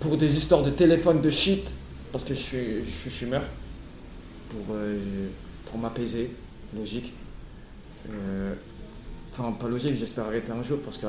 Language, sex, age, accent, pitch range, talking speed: French, male, 20-39, French, 110-145 Hz, 155 wpm